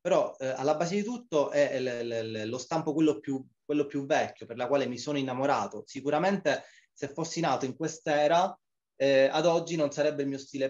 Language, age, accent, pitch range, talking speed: Italian, 20-39, native, 125-150 Hz, 185 wpm